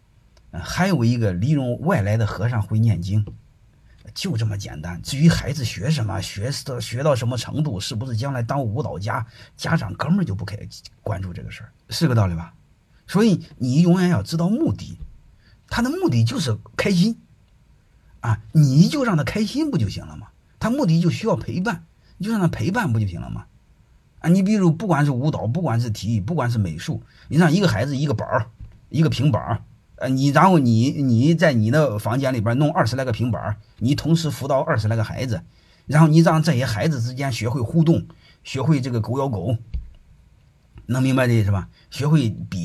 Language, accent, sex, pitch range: Chinese, native, male, 110-160 Hz